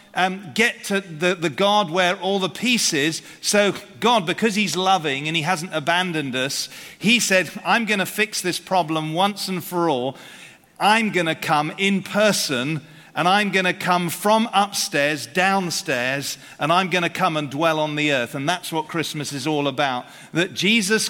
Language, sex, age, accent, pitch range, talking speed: English, male, 40-59, British, 155-195 Hz, 185 wpm